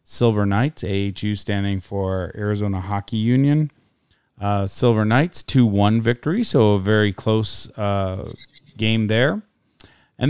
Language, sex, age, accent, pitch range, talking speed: English, male, 40-59, American, 105-125 Hz, 120 wpm